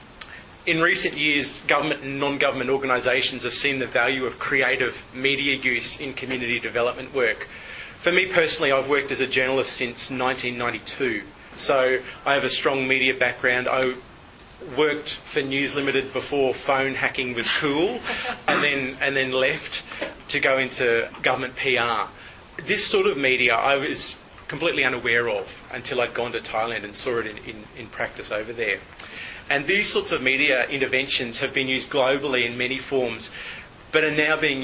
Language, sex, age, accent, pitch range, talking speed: English, male, 30-49, Australian, 125-140 Hz, 165 wpm